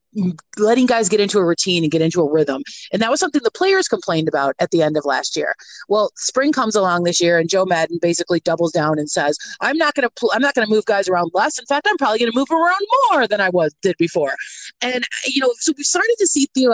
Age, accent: 30-49, American